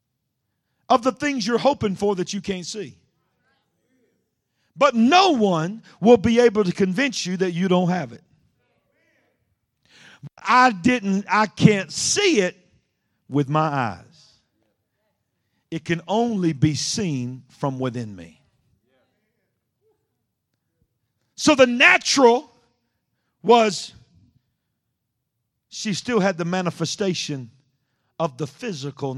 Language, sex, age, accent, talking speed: English, male, 50-69, American, 110 wpm